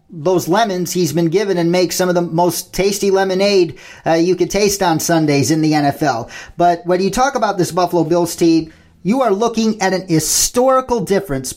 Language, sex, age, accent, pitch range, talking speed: English, male, 40-59, American, 165-195 Hz, 195 wpm